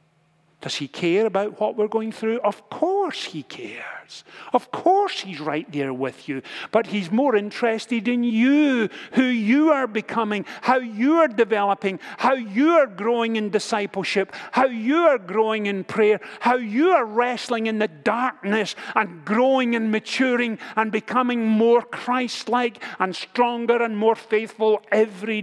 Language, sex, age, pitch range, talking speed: English, male, 50-69, 160-230 Hz, 155 wpm